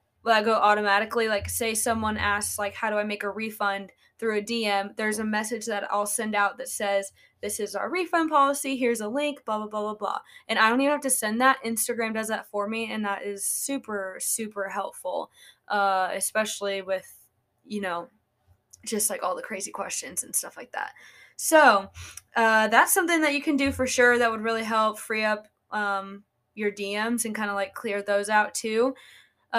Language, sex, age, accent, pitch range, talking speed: English, female, 10-29, American, 205-235 Hz, 205 wpm